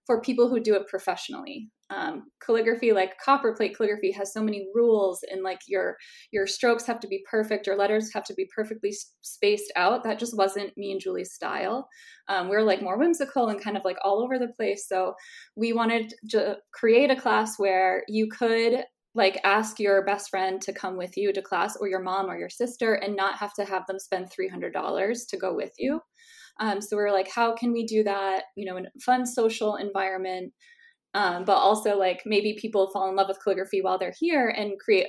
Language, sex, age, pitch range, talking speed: English, female, 20-39, 195-235 Hz, 215 wpm